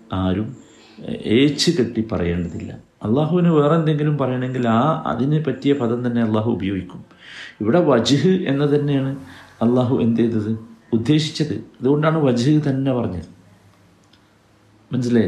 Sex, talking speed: male, 110 wpm